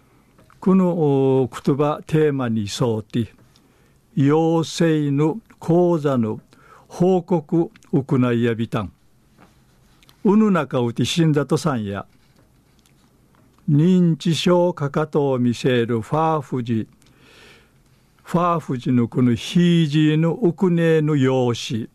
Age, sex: 60-79, male